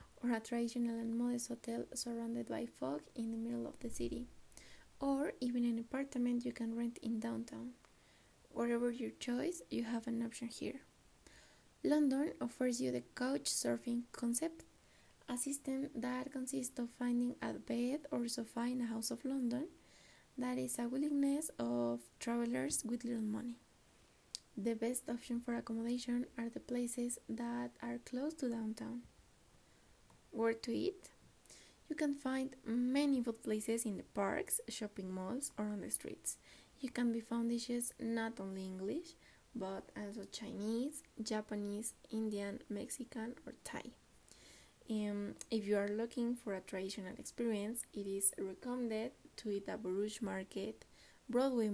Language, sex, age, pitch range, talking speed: English, female, 20-39, 210-250 Hz, 150 wpm